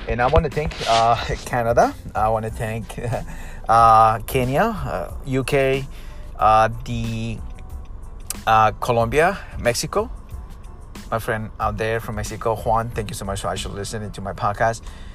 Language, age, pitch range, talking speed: English, 30-49, 80-115 Hz, 145 wpm